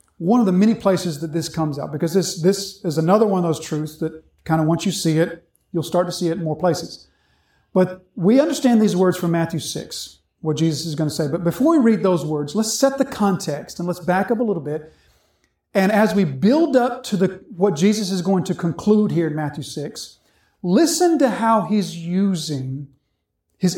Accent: American